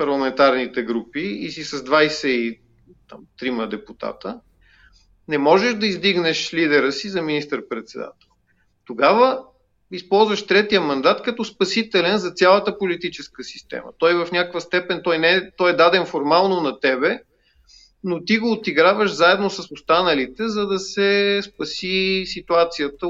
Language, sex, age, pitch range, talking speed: English, male, 40-59, 145-195 Hz, 125 wpm